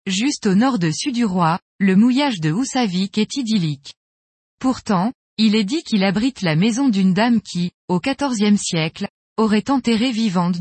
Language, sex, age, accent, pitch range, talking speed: French, female, 20-39, French, 180-250 Hz, 160 wpm